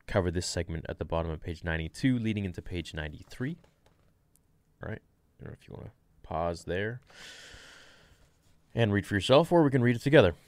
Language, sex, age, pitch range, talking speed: English, male, 20-39, 85-110 Hz, 190 wpm